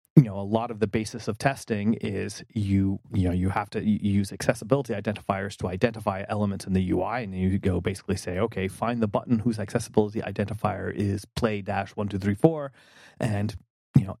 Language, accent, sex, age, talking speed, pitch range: English, American, male, 30-49, 200 wpm, 100-115 Hz